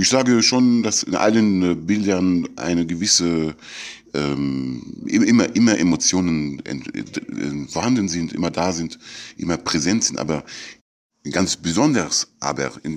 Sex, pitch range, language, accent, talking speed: male, 75-95 Hz, German, German, 140 wpm